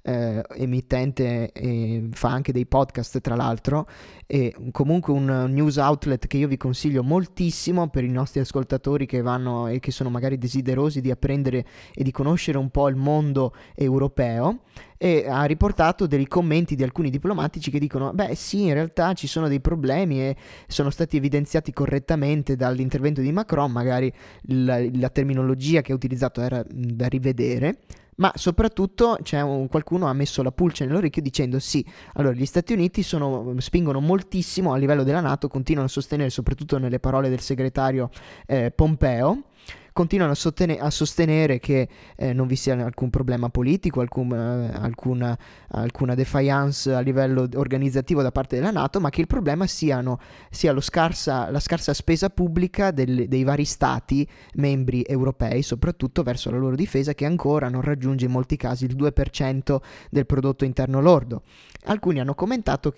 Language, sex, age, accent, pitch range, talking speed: Italian, male, 20-39, native, 130-150 Hz, 155 wpm